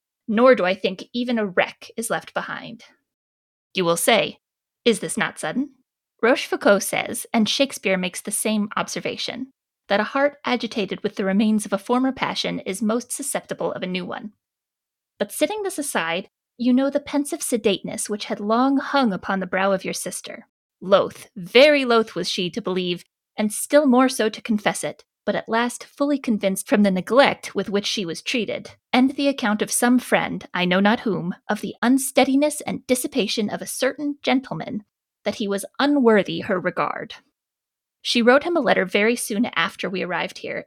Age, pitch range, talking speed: 20-39, 200-260 Hz, 185 wpm